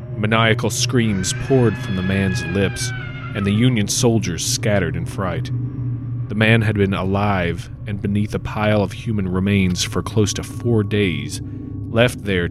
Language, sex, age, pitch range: English, male, 30-49, 95-125 Hz